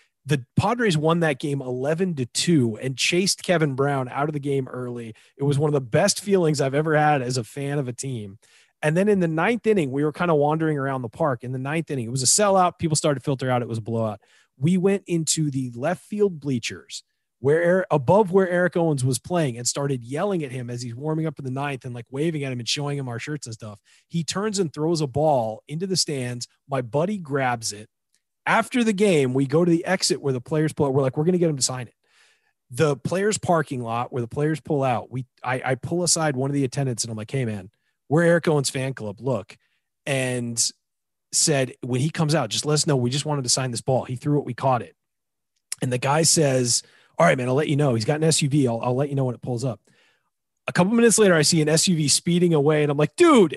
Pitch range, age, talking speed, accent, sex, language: 130-165 Hz, 30-49, 255 wpm, American, male, English